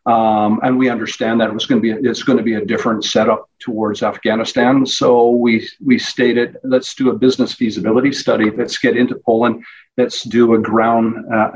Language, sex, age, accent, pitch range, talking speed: English, male, 50-69, American, 110-125 Hz, 195 wpm